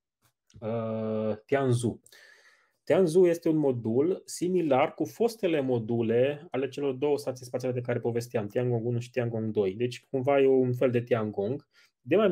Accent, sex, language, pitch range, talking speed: native, male, Romanian, 115-145 Hz, 170 wpm